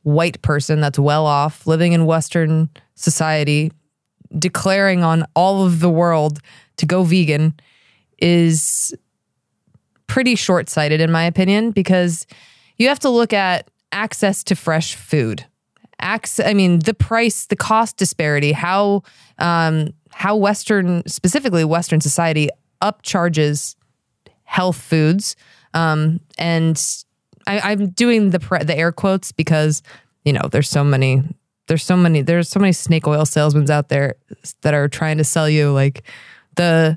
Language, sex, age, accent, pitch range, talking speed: English, female, 20-39, American, 155-195 Hz, 140 wpm